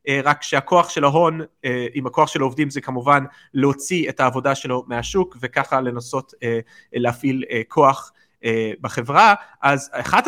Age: 30-49